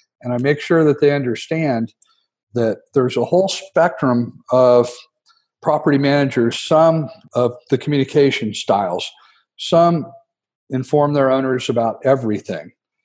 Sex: male